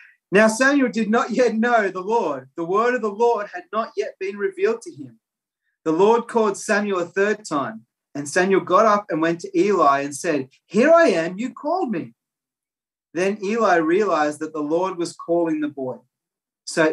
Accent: Australian